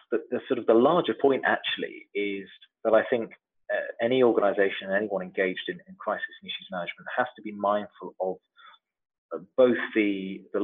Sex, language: male, English